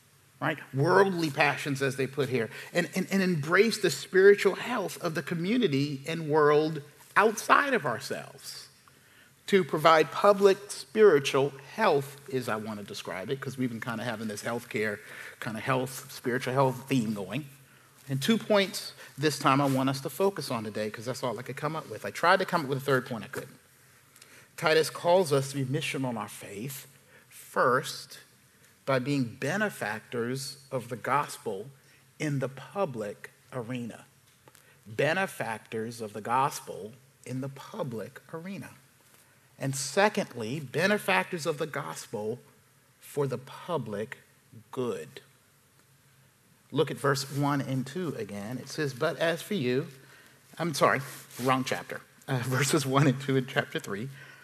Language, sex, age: English, male, 40-59